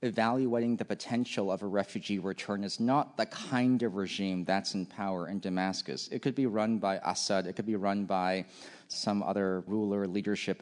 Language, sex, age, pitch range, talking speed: English, male, 30-49, 95-115 Hz, 185 wpm